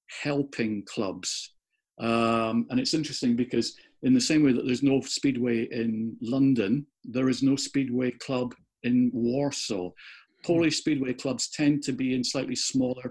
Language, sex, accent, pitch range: English, male, British, 115-135 Hz